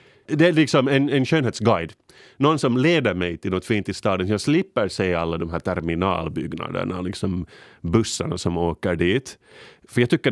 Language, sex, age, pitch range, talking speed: Swedish, male, 30-49, 90-120 Hz, 175 wpm